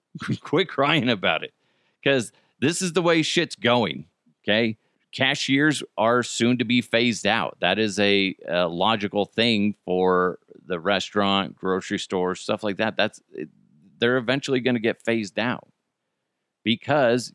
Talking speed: 145 wpm